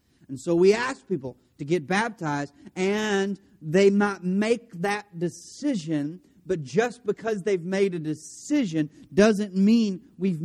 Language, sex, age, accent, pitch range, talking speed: English, male, 40-59, American, 155-235 Hz, 140 wpm